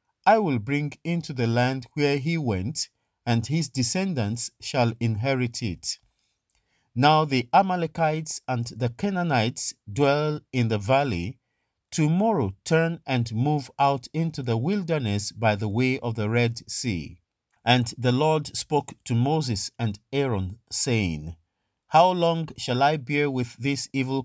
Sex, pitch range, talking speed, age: male, 115-155 Hz, 140 wpm, 50-69